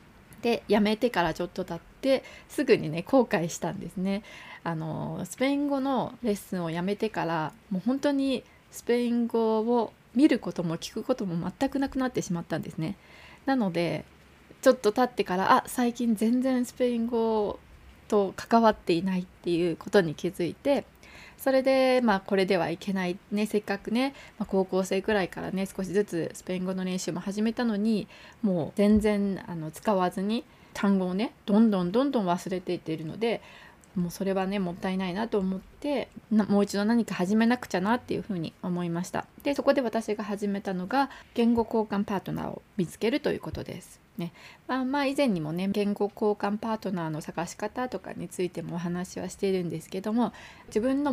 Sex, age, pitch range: female, 20-39, 180-230 Hz